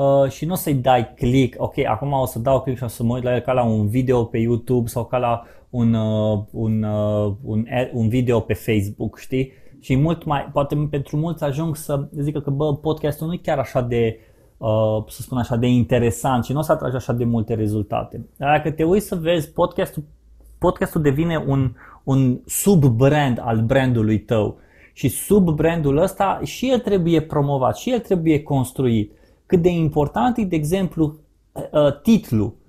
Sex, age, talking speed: male, 20-39, 185 wpm